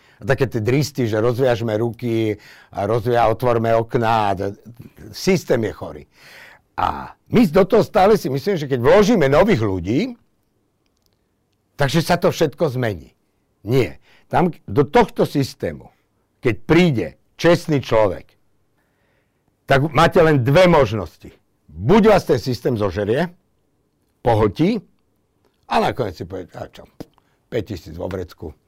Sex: male